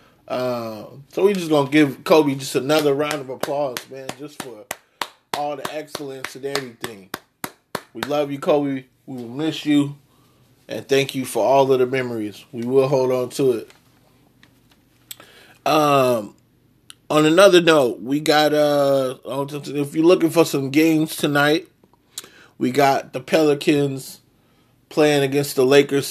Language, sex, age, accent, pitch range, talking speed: English, male, 20-39, American, 130-145 Hz, 150 wpm